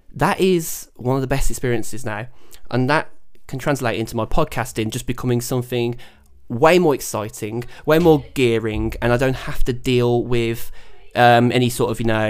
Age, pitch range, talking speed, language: 20-39, 115-135 Hz, 180 wpm, English